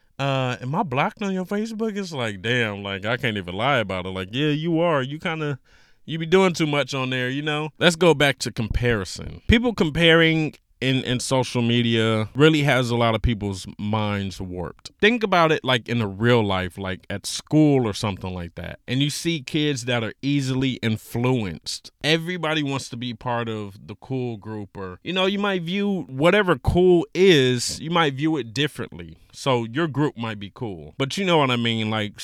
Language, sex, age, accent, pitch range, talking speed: English, male, 20-39, American, 115-155 Hz, 205 wpm